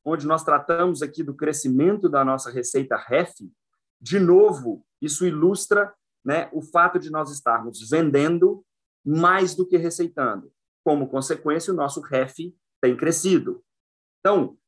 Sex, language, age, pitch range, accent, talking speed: male, Portuguese, 30-49, 140-180 Hz, Brazilian, 135 wpm